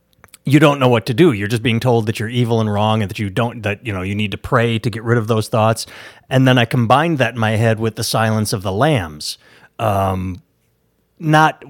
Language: English